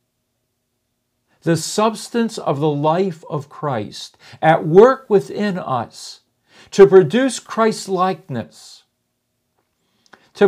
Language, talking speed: English, 90 wpm